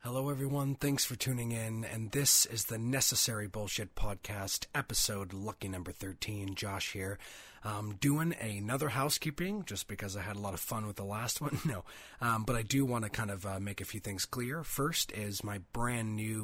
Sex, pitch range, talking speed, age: male, 100-120 Hz, 195 wpm, 30-49